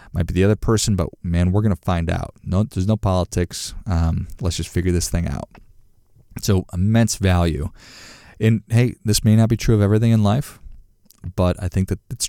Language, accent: English, American